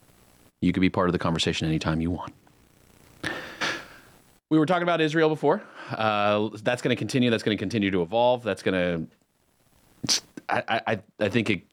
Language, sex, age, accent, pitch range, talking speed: English, male, 30-49, American, 100-155 Hz, 175 wpm